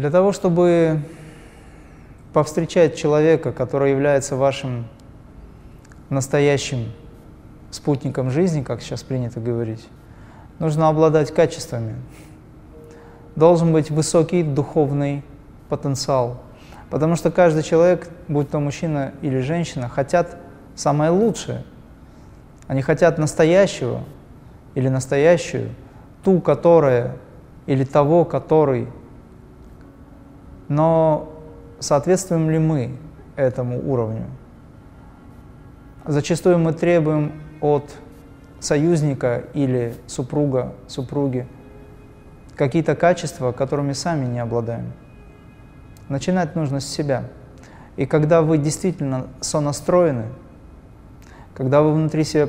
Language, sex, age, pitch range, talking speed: Russian, male, 20-39, 130-160 Hz, 90 wpm